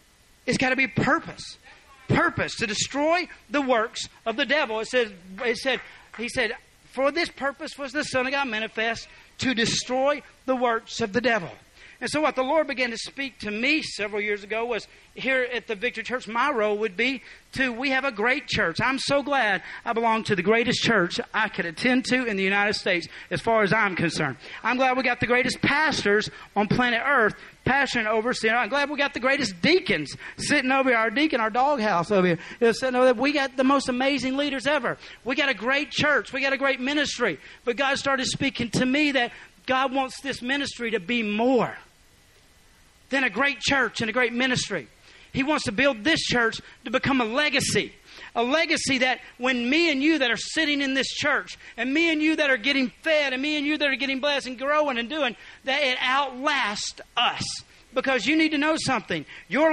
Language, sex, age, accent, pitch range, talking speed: English, male, 40-59, American, 230-280 Hz, 215 wpm